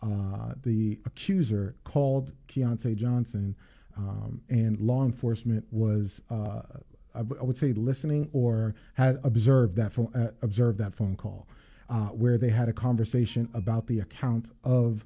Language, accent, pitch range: English, American, 110-130 Hz